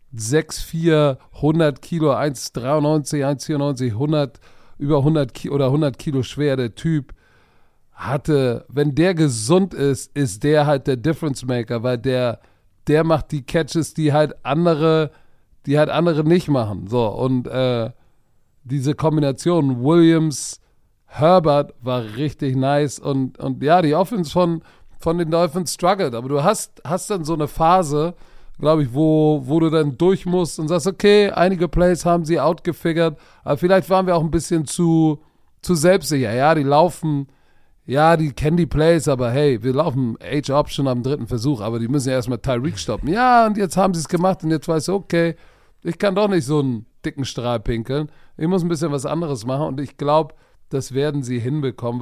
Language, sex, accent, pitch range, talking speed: German, male, German, 135-165 Hz, 180 wpm